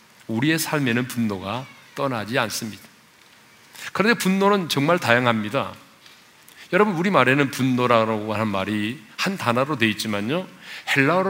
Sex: male